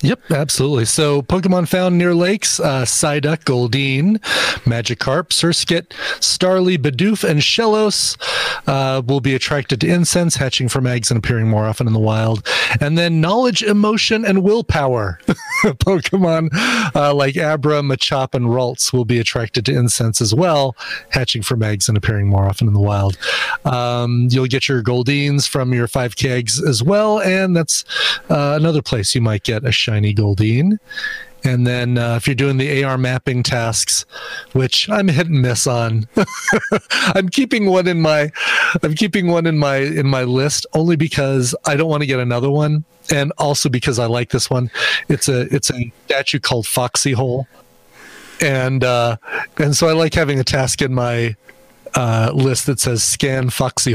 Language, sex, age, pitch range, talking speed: English, male, 30-49, 120-160 Hz, 170 wpm